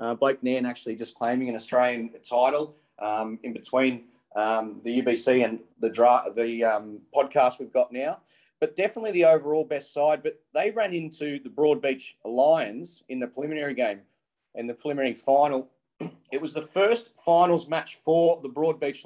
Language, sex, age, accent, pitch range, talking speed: English, male, 30-49, Australian, 125-155 Hz, 170 wpm